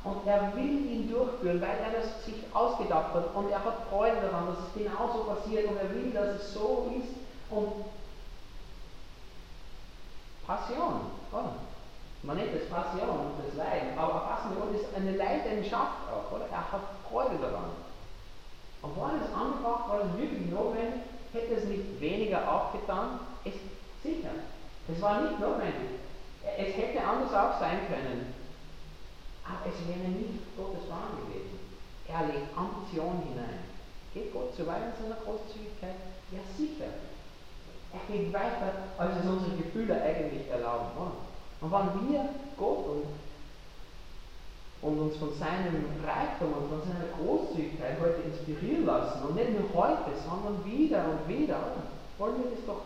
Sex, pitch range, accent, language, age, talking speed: male, 170-220 Hz, German, German, 40-59, 155 wpm